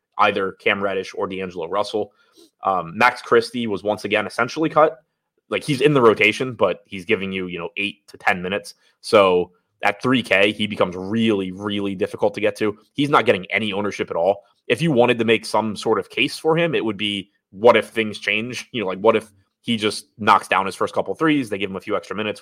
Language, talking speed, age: English, 235 wpm, 20-39